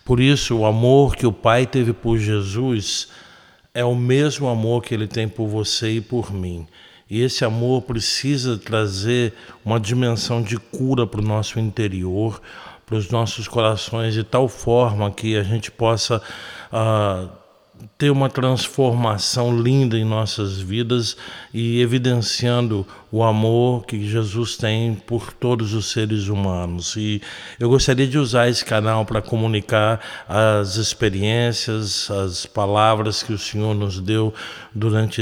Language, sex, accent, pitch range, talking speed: Portuguese, male, Brazilian, 105-120 Hz, 145 wpm